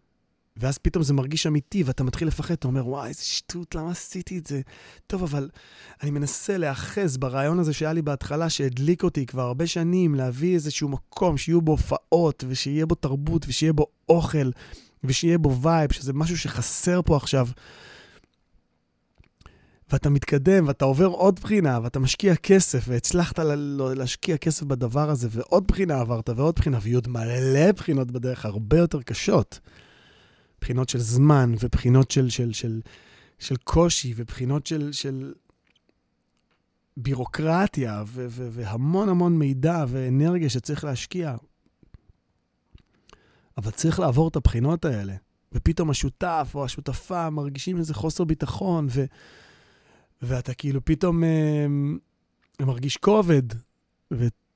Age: 30-49